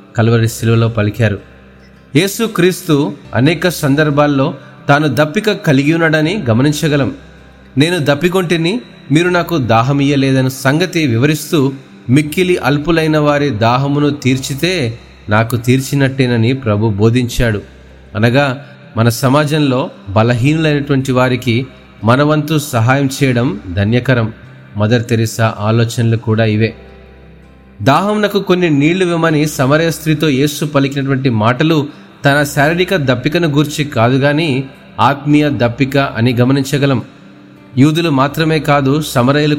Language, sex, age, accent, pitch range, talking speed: Telugu, male, 30-49, native, 115-150 Hz, 95 wpm